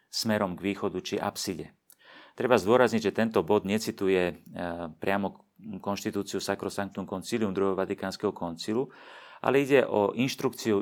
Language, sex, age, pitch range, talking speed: Slovak, male, 40-59, 95-115 Hz, 120 wpm